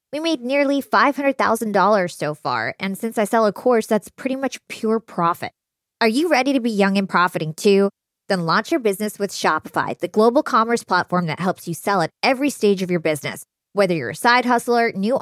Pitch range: 175-235 Hz